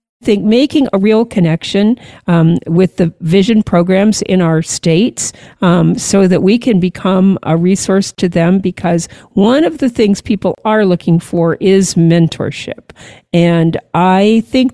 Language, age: English, 50-69